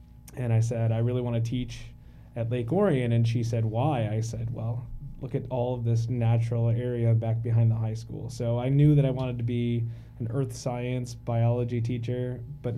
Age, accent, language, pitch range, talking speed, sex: 20-39, American, English, 115-130 Hz, 205 wpm, male